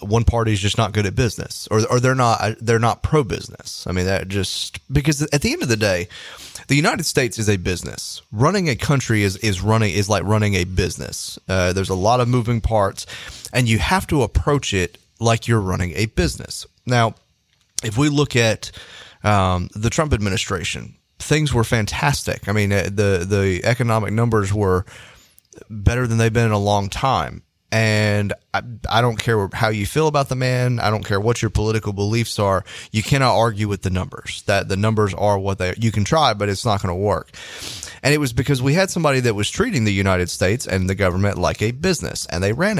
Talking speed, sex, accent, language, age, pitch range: 210 wpm, male, American, English, 30-49, 100-115 Hz